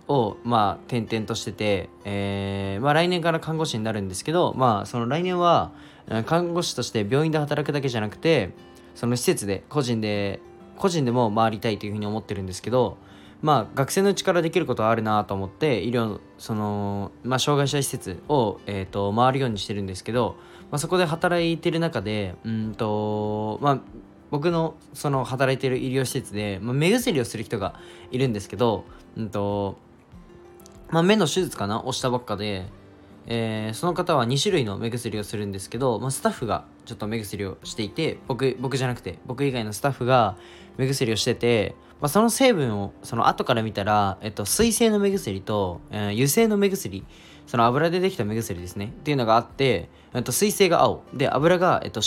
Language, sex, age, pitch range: Japanese, male, 20-39, 105-150 Hz